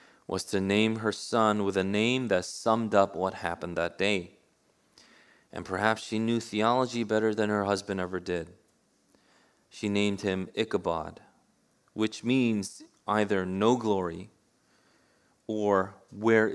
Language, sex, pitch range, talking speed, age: English, male, 100-115 Hz, 135 wpm, 30-49